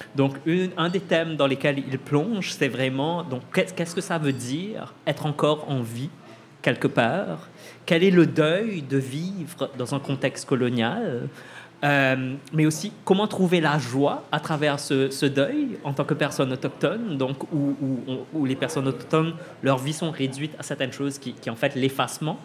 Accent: French